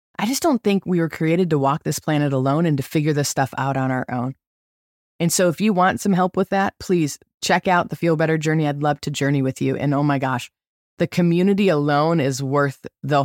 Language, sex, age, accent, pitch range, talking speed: English, female, 20-39, American, 140-180 Hz, 240 wpm